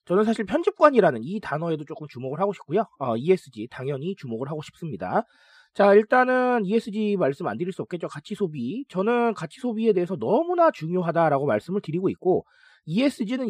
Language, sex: Korean, male